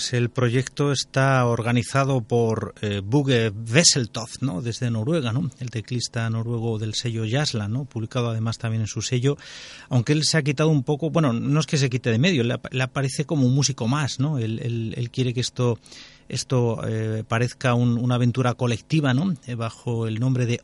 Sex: male